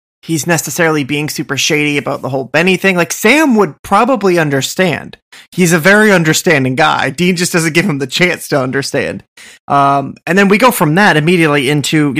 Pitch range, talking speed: 135-175 Hz, 190 wpm